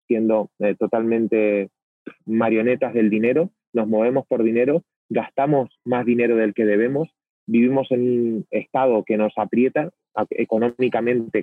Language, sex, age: Spanish, male, 30-49